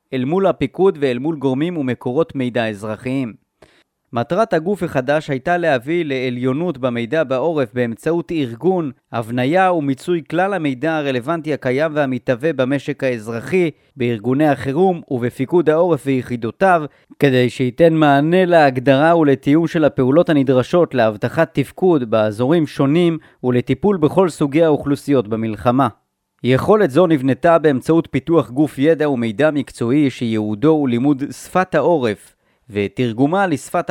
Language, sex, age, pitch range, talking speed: Hebrew, male, 30-49, 125-165 Hz, 115 wpm